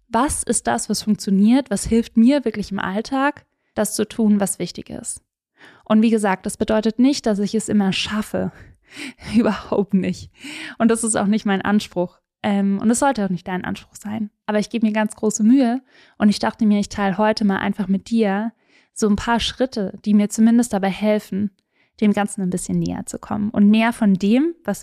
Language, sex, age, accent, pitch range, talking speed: German, female, 10-29, German, 200-240 Hz, 205 wpm